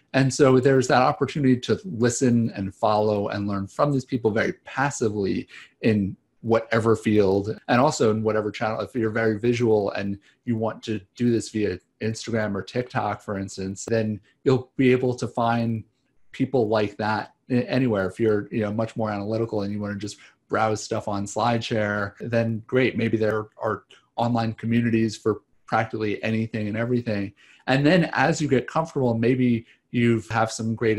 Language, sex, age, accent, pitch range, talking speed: English, male, 40-59, American, 105-120 Hz, 170 wpm